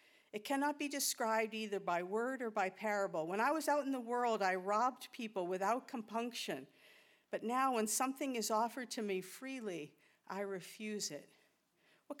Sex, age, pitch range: female, 50-69, 190-240 Hz